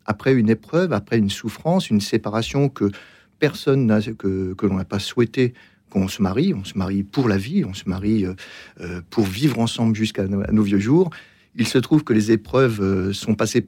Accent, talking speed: French, 195 wpm